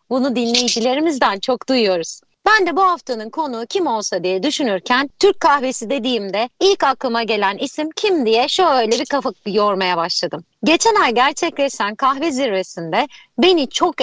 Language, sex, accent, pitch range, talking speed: Turkish, female, native, 220-300 Hz, 145 wpm